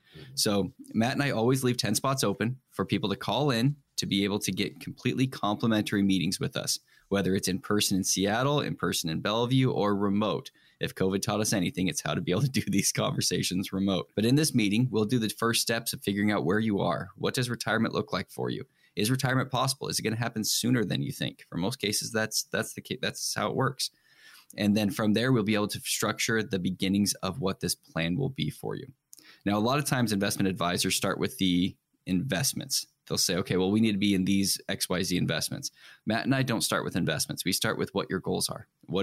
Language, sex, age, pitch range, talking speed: English, male, 10-29, 95-120 Hz, 235 wpm